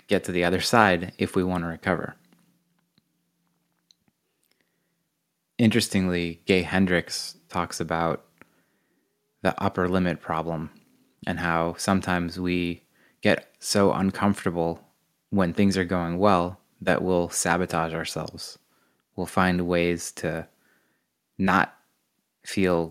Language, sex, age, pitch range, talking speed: English, male, 20-39, 85-100 Hz, 105 wpm